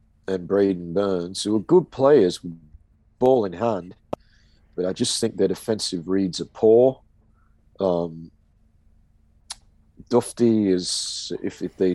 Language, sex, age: English, male, 40-59